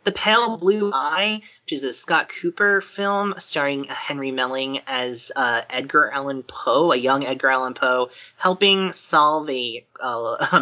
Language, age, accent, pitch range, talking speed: English, 30-49, American, 120-155 Hz, 155 wpm